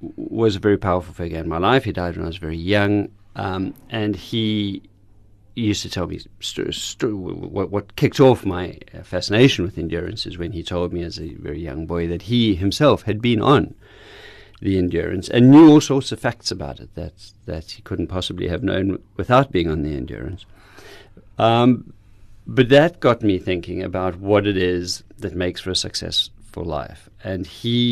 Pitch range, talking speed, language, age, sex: 85-110 Hz, 185 wpm, English, 40-59, male